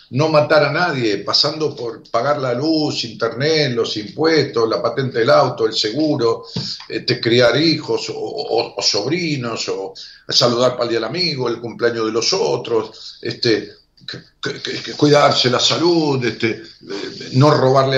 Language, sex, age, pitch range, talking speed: Spanish, male, 50-69, 115-155 Hz, 165 wpm